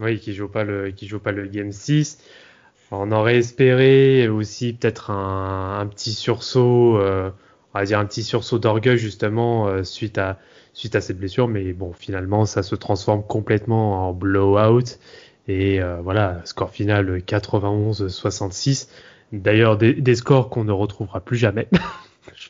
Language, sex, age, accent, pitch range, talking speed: French, male, 20-39, French, 100-130 Hz, 155 wpm